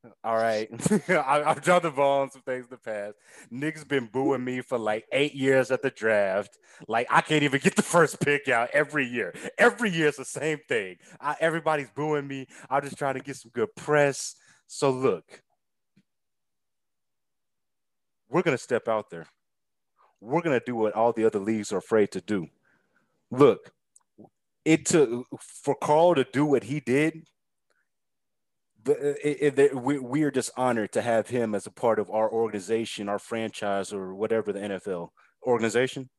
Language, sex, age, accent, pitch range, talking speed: English, male, 30-49, American, 110-145 Hz, 180 wpm